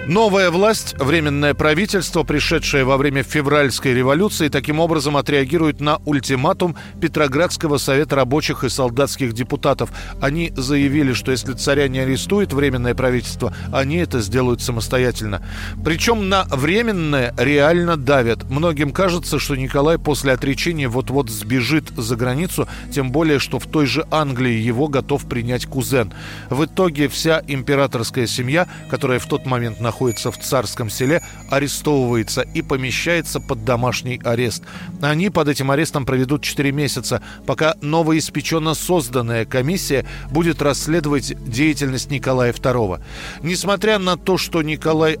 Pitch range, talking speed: 125-160 Hz, 135 wpm